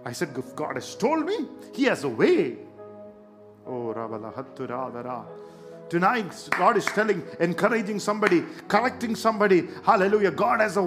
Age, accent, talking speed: 50-69, Indian, 140 wpm